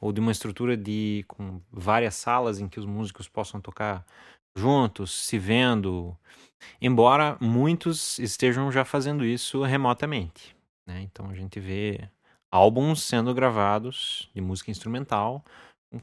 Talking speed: 130 wpm